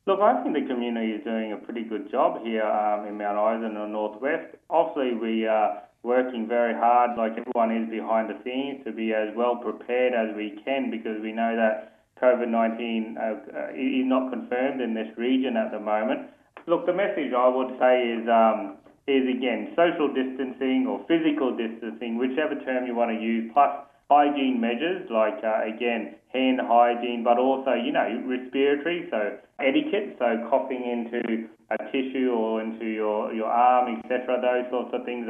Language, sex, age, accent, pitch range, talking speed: English, male, 20-39, Australian, 115-135 Hz, 175 wpm